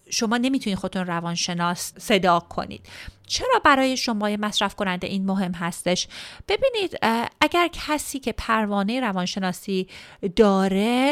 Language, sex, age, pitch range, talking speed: Persian, female, 30-49, 195-275 Hz, 115 wpm